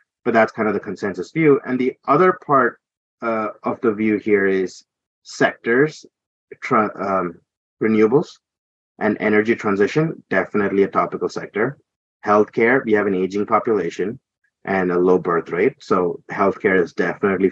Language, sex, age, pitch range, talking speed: English, male, 30-49, 100-135 Hz, 145 wpm